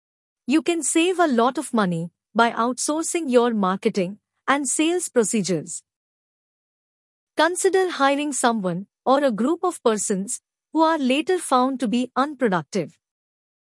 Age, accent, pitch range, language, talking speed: 50-69, Indian, 225-315 Hz, English, 125 wpm